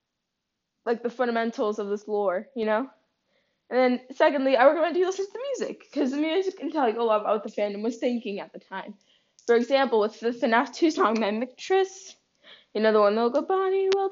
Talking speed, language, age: 225 wpm, English, 10-29